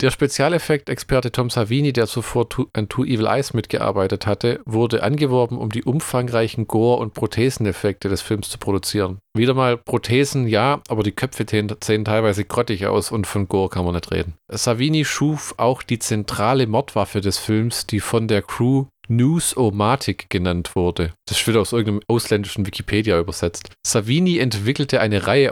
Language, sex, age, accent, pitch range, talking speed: German, male, 40-59, German, 100-125 Hz, 160 wpm